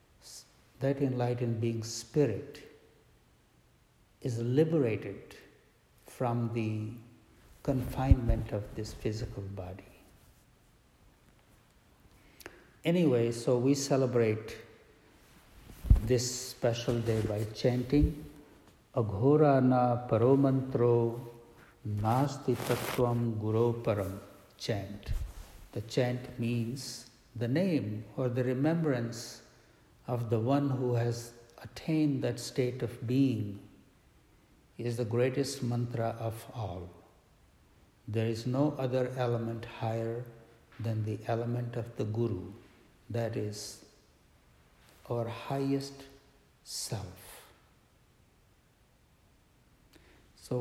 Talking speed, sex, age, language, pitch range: 85 wpm, male, 60-79, English, 110-130 Hz